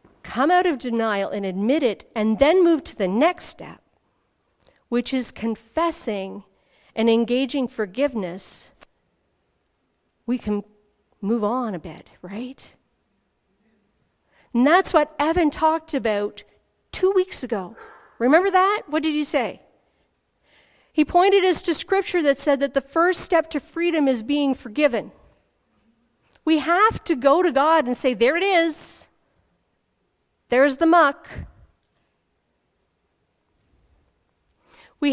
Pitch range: 235-315 Hz